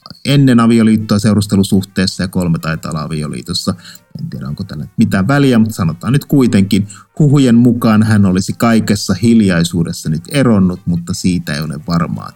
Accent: native